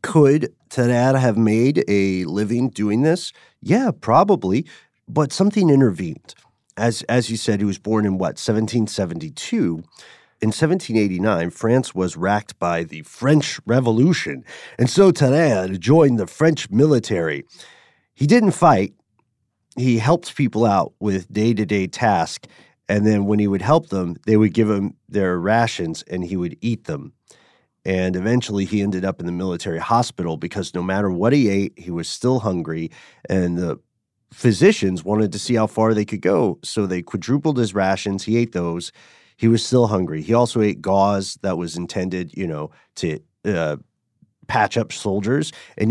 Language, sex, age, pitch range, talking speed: English, male, 40-59, 95-120 Hz, 160 wpm